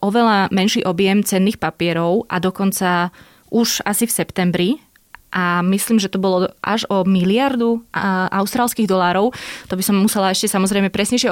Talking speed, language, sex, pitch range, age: 150 wpm, Slovak, female, 185-210 Hz, 20-39